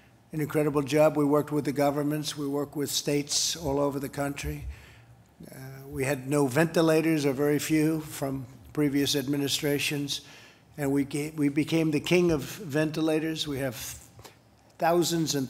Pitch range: 130-150 Hz